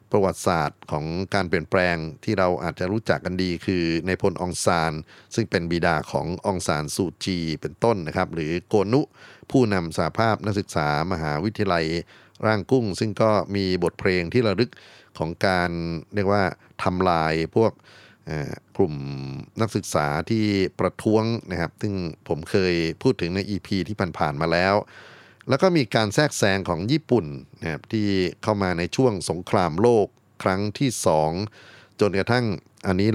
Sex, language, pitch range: male, Thai, 85-110 Hz